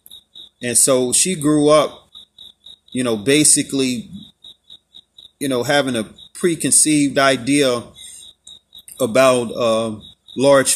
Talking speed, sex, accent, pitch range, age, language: 95 wpm, male, American, 115-140 Hz, 30-49, English